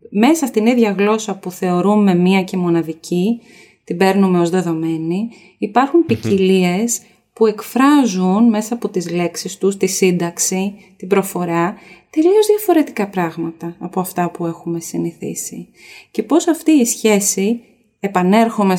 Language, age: Greek, 20-39